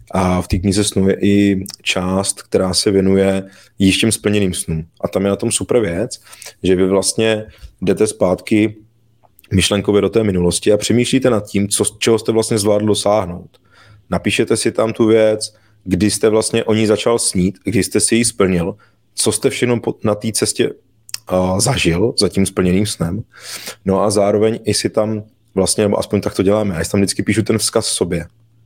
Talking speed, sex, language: 185 wpm, male, Czech